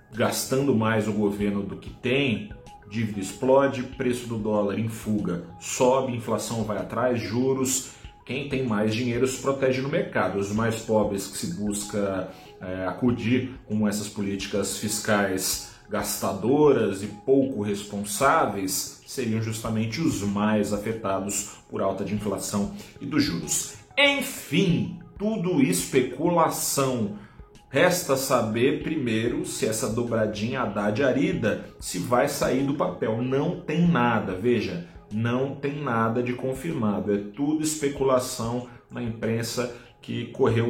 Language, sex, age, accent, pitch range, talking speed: Portuguese, male, 40-59, Brazilian, 100-130 Hz, 130 wpm